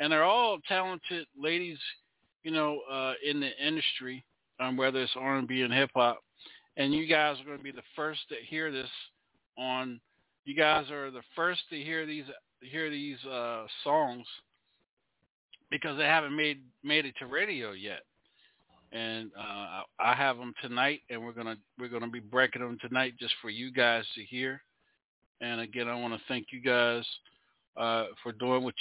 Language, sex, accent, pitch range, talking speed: English, male, American, 125-145 Hz, 175 wpm